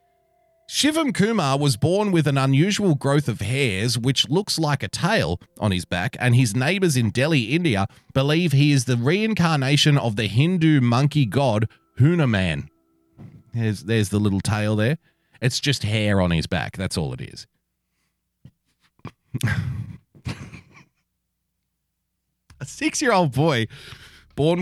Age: 30-49